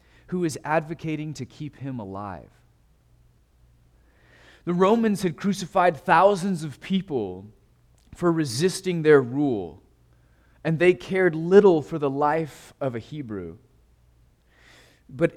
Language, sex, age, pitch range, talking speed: English, male, 30-49, 120-170 Hz, 115 wpm